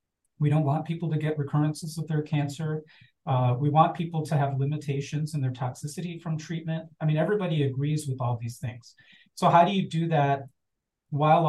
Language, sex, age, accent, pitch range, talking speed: English, male, 40-59, American, 135-165 Hz, 195 wpm